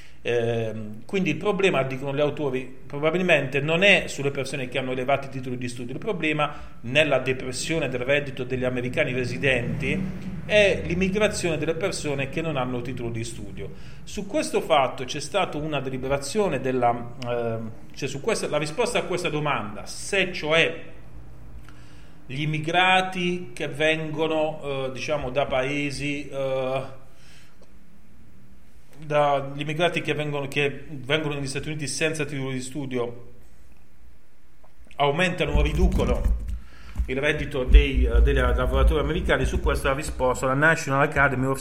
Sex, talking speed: male, 140 wpm